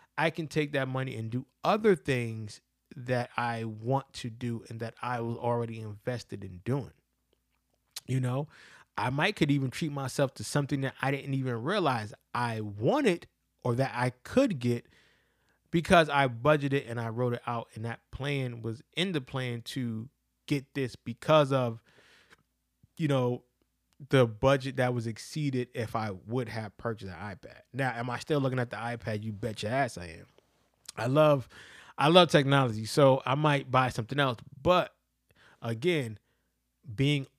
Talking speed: 170 wpm